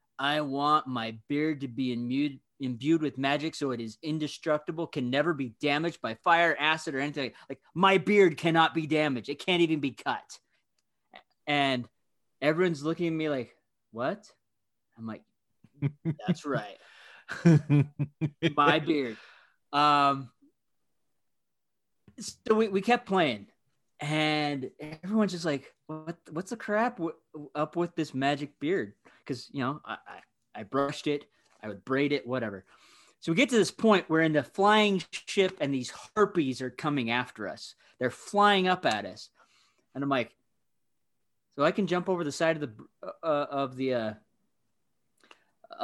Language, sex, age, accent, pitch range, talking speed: English, male, 30-49, American, 135-170 Hz, 155 wpm